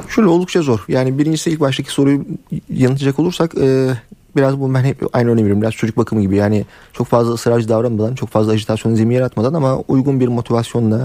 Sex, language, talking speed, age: male, Turkish, 190 wpm, 30-49